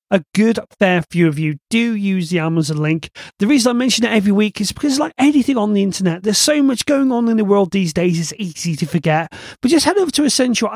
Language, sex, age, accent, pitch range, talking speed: English, male, 40-59, British, 170-245 Hz, 250 wpm